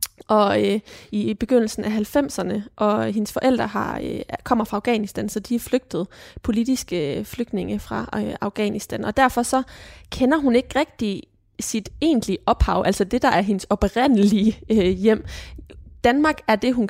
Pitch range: 200-235 Hz